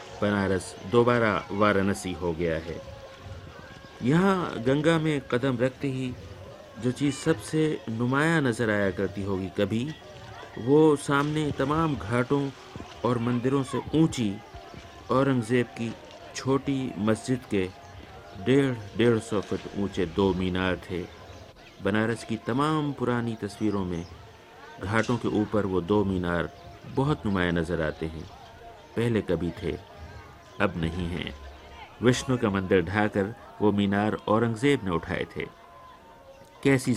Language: Hindi